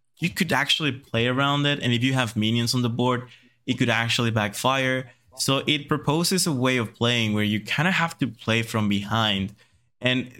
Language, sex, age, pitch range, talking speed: English, male, 20-39, 115-140 Hz, 200 wpm